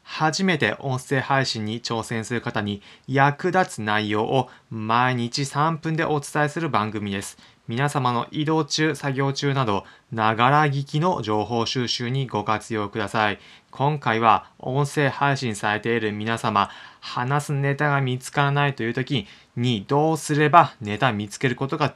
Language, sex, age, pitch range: Japanese, male, 20-39, 110-145 Hz